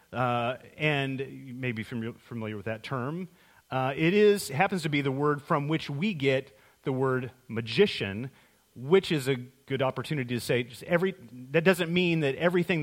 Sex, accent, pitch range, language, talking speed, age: male, American, 125-175 Hz, English, 180 wpm, 40-59